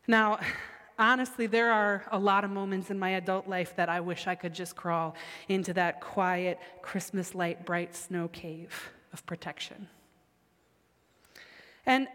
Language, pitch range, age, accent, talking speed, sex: English, 185-225 Hz, 30-49, American, 145 wpm, female